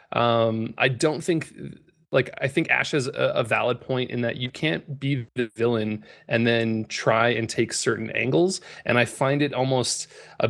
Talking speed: 185 wpm